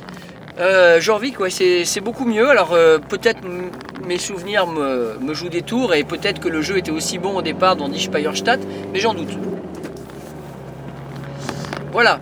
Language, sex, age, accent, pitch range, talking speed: French, male, 40-59, French, 160-210 Hz, 165 wpm